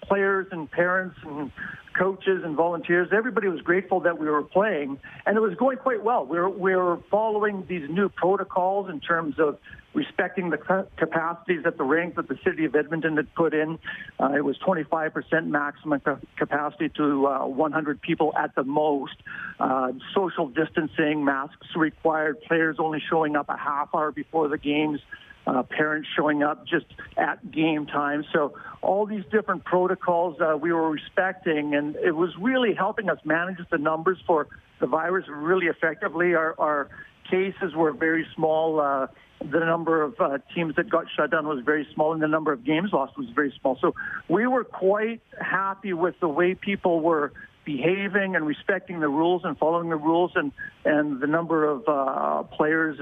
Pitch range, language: 150-185 Hz, English